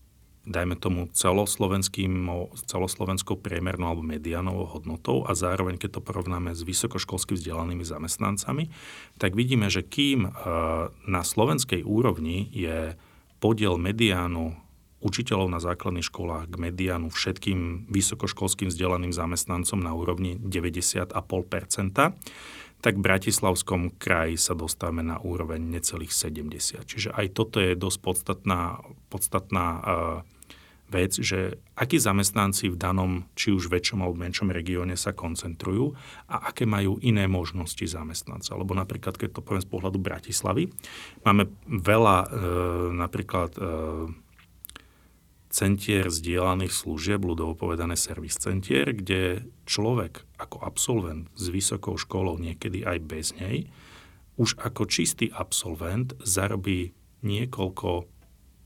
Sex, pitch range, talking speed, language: male, 85-100 Hz, 115 wpm, Slovak